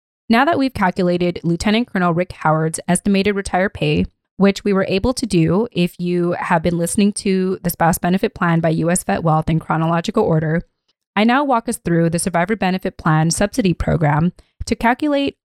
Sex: female